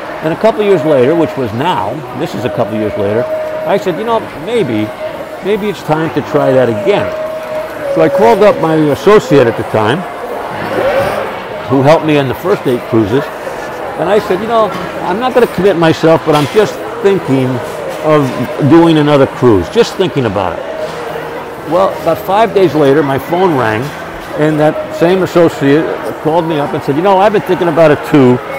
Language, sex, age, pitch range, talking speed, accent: English, male, 60-79, 135-180 Hz, 195 wpm, American